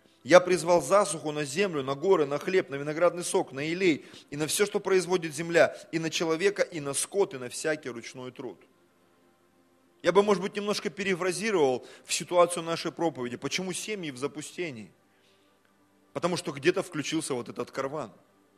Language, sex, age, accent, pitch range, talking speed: Russian, male, 30-49, native, 125-190 Hz, 170 wpm